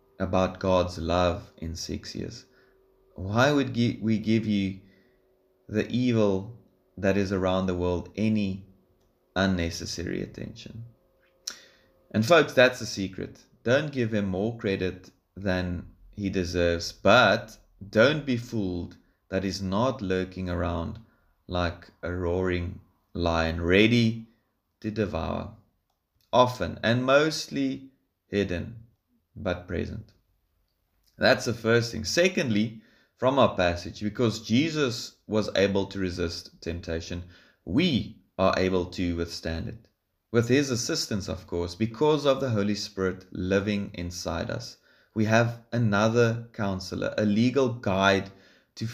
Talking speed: 120 wpm